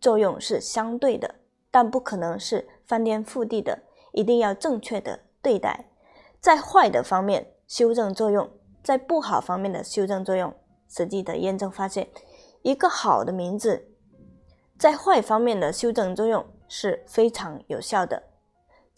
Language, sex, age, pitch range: Chinese, female, 20-39, 195-270 Hz